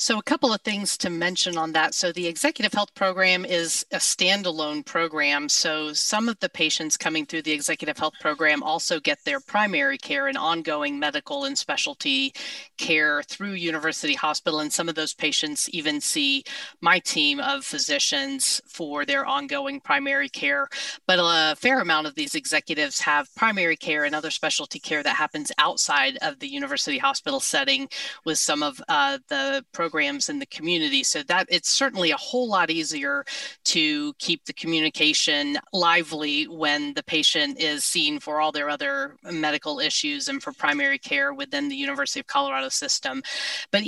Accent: American